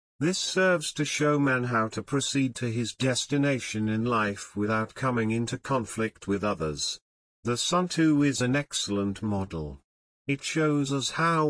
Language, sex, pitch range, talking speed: Urdu, male, 110-140 Hz, 150 wpm